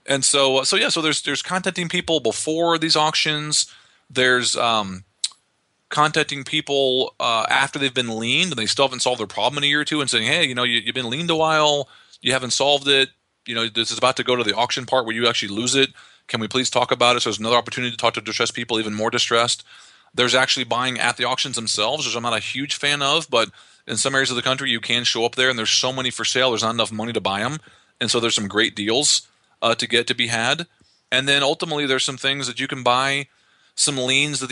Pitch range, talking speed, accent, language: 115-140 Hz, 250 wpm, American, English